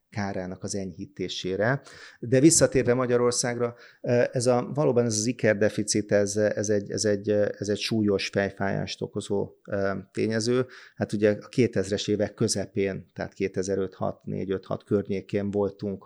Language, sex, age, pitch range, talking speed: Hungarian, male, 30-49, 100-115 Hz, 125 wpm